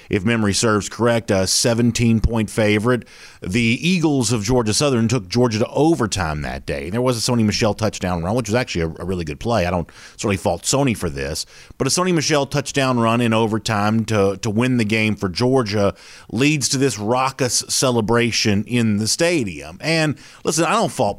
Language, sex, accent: English, male, American